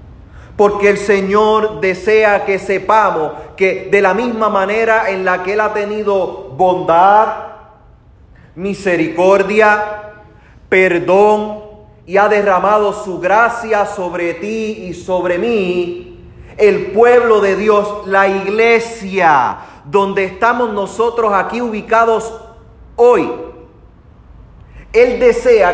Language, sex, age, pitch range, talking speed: Spanish, male, 30-49, 190-235 Hz, 105 wpm